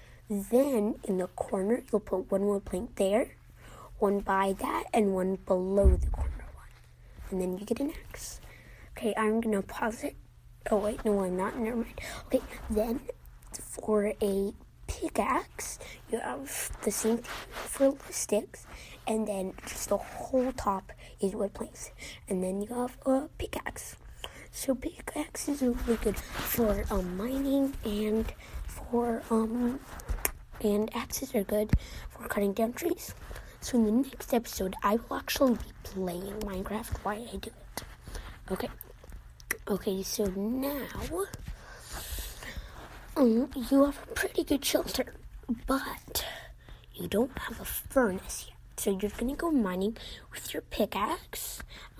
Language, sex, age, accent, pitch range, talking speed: English, female, 20-39, American, 195-245 Hz, 145 wpm